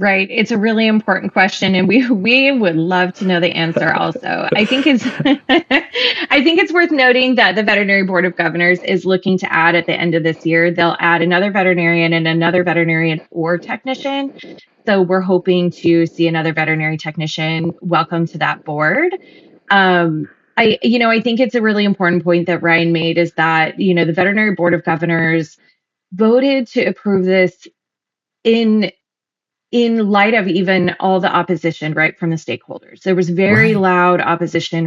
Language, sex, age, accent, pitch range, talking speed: English, female, 20-39, American, 165-210 Hz, 180 wpm